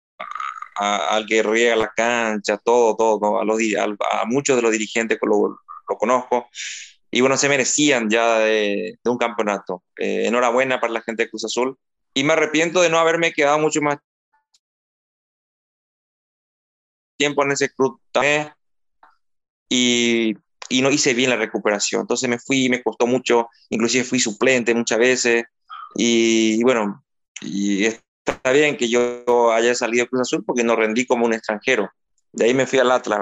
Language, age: Spanish, 20-39